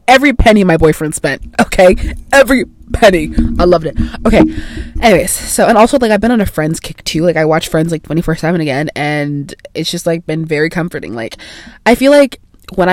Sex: female